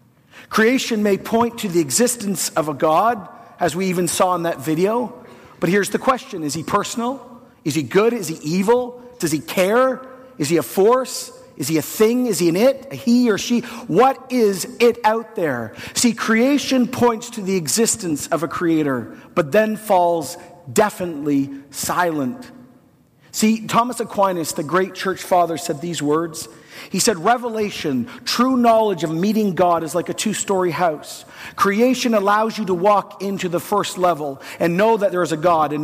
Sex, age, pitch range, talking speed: male, 40-59, 170-230 Hz, 180 wpm